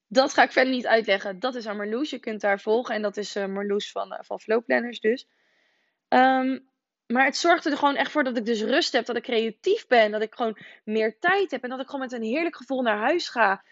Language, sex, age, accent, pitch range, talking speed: Dutch, female, 20-39, Dutch, 215-275 Hz, 245 wpm